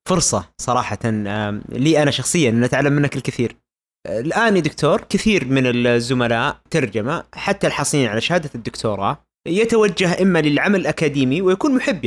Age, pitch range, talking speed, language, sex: 30-49, 130-185 Hz, 135 wpm, Arabic, male